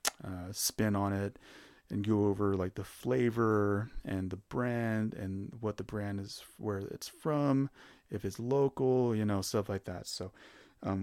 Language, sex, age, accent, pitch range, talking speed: English, male, 30-49, American, 100-120 Hz, 170 wpm